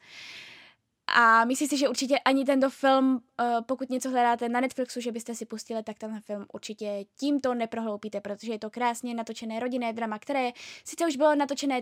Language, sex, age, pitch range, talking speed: Czech, female, 10-29, 230-310 Hz, 180 wpm